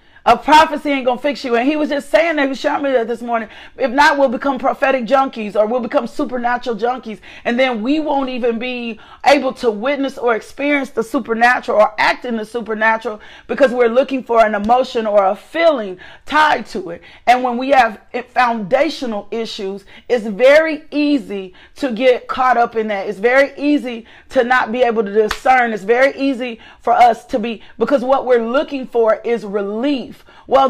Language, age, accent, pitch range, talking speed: English, 40-59, American, 225-275 Hz, 195 wpm